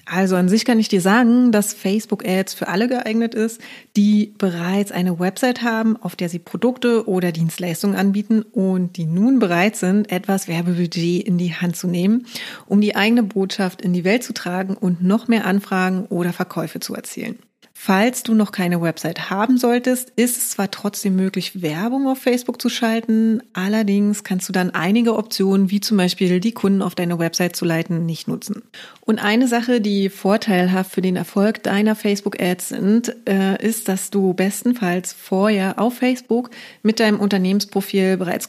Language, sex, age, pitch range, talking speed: German, female, 30-49, 185-230 Hz, 175 wpm